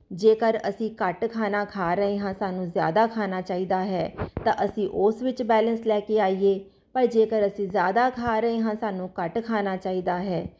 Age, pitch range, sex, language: 30-49, 195-240 Hz, female, Punjabi